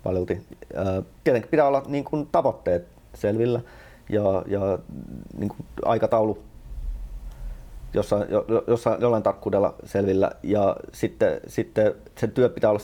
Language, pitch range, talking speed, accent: Finnish, 95-110 Hz, 115 wpm, native